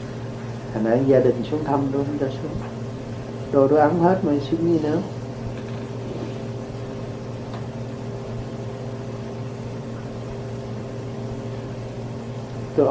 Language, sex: Vietnamese, male